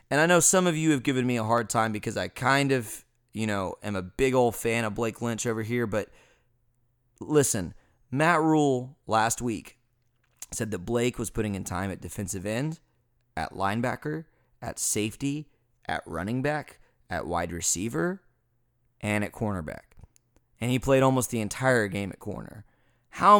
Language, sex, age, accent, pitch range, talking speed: English, male, 20-39, American, 110-140 Hz, 170 wpm